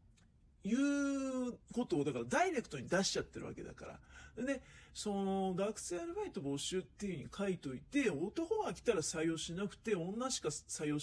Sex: male